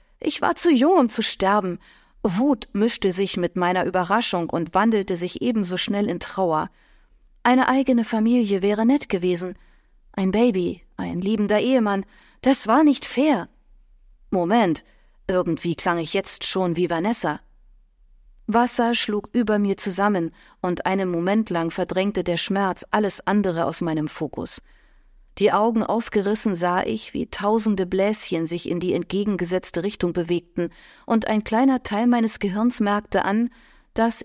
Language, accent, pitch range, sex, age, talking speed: German, German, 180-230 Hz, female, 40-59, 145 wpm